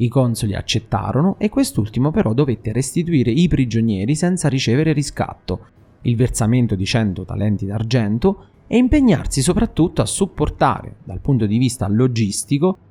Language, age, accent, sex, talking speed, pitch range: Italian, 30-49, native, male, 135 wpm, 110-150 Hz